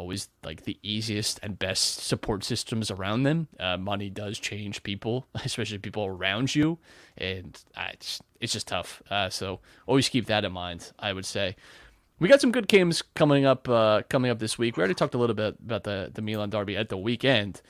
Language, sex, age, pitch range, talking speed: English, male, 20-39, 95-120 Hz, 205 wpm